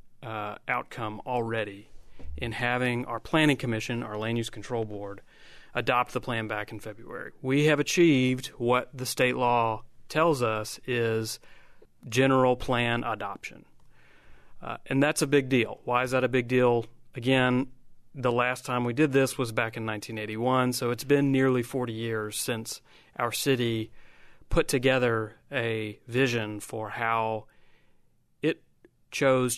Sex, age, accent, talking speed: male, 30-49, American, 145 wpm